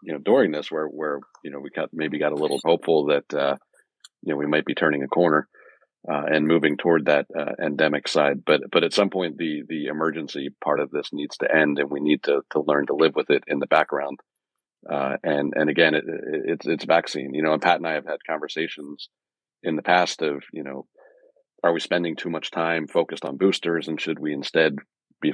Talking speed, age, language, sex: 230 wpm, 40-59, English, male